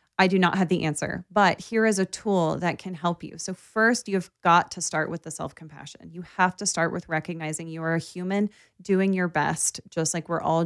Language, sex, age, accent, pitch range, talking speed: English, female, 30-49, American, 165-195 Hz, 230 wpm